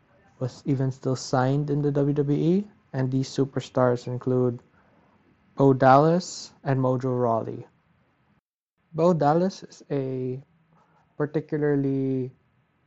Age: 20-39